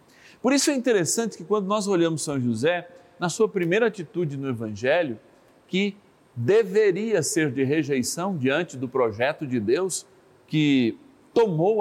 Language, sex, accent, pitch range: Portuguese, male, Brazilian, 125-175 Hz